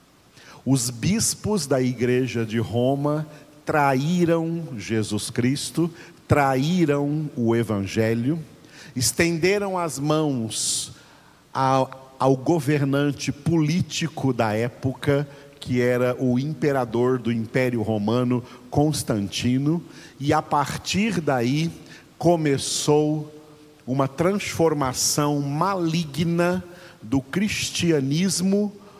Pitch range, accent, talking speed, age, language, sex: 130-170 Hz, Brazilian, 80 wpm, 50-69, Portuguese, male